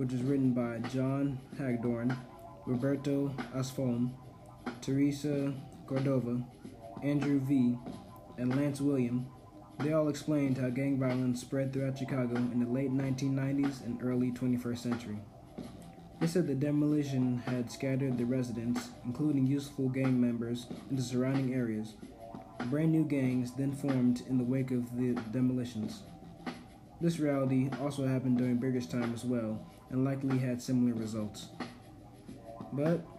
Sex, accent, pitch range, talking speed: male, American, 125-145 Hz, 130 wpm